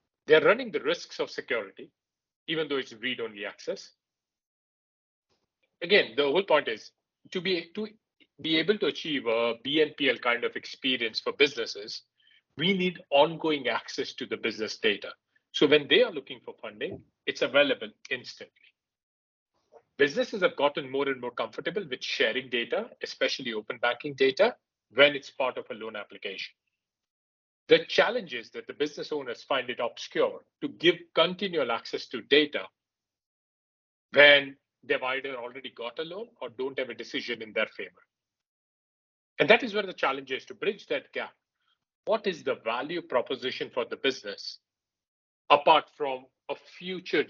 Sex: male